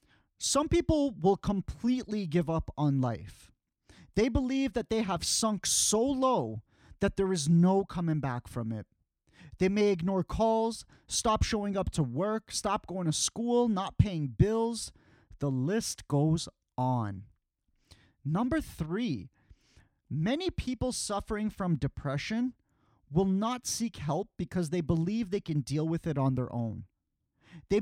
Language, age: English, 30-49